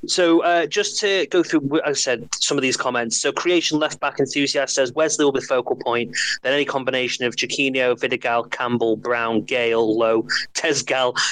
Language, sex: English, male